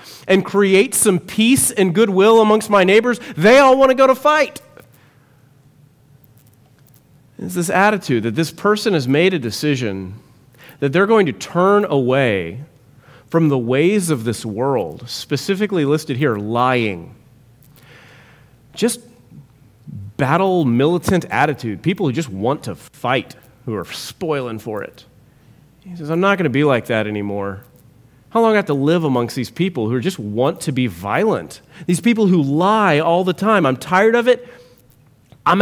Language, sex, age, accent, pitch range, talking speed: English, male, 30-49, American, 125-175 Hz, 160 wpm